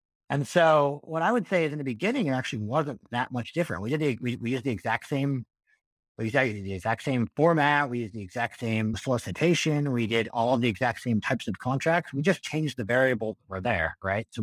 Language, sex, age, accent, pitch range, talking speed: English, male, 50-69, American, 115-155 Hz, 235 wpm